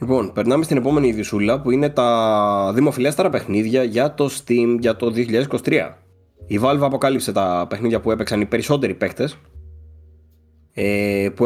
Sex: male